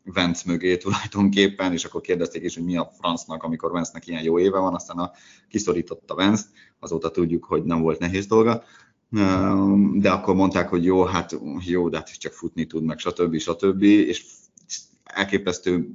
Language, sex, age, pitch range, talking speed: Hungarian, male, 30-49, 80-95 Hz, 175 wpm